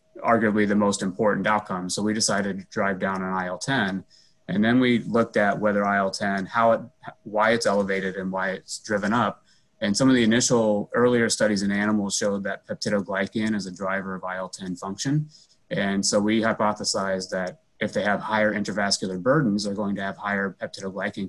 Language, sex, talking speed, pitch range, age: English, male, 185 wpm, 95-115 Hz, 30-49